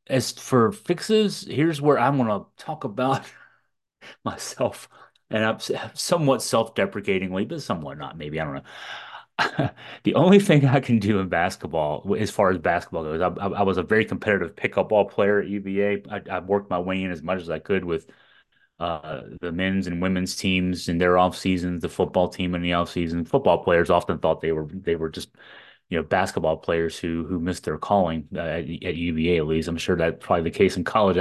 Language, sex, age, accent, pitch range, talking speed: English, male, 30-49, American, 90-120 Hz, 210 wpm